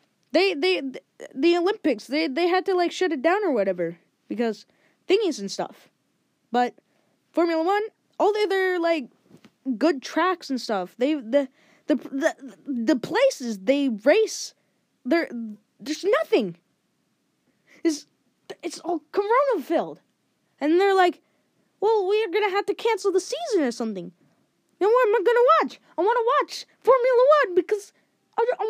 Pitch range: 235-390 Hz